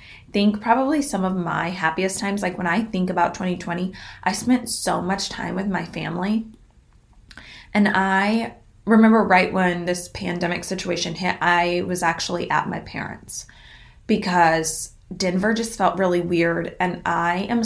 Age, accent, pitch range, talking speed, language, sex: 20-39, American, 175-210 Hz, 155 wpm, English, female